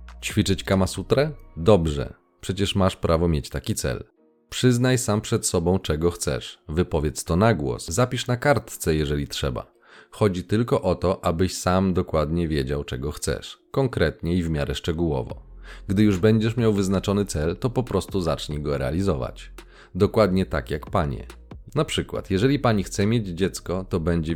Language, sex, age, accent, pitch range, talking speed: Polish, male, 30-49, native, 80-105 Hz, 160 wpm